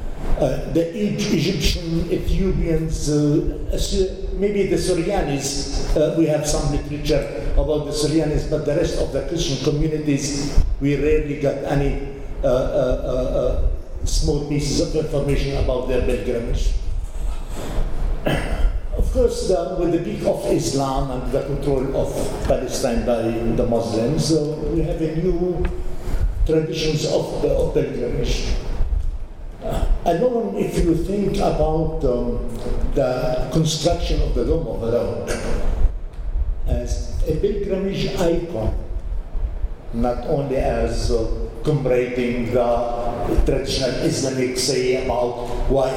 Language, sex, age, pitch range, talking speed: English, male, 60-79, 120-160 Hz, 120 wpm